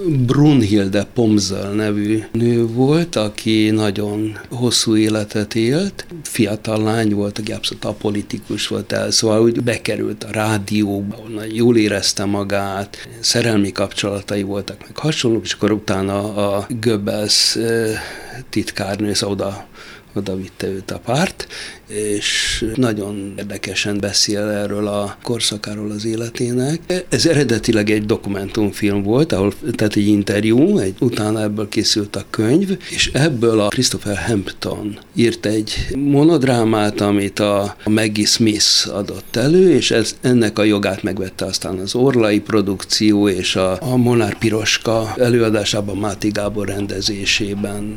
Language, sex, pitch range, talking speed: Hungarian, male, 100-115 Hz, 125 wpm